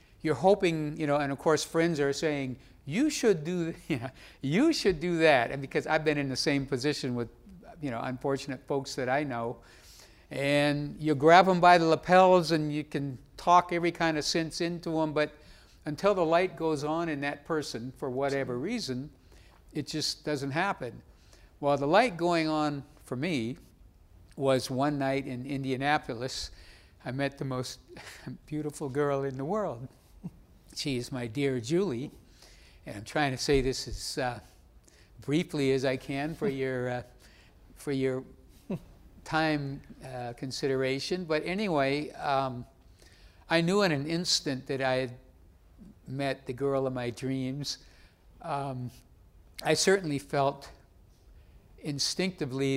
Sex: male